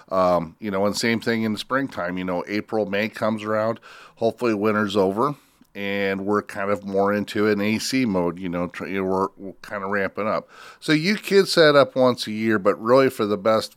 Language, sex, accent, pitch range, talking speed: English, male, American, 100-120 Hz, 215 wpm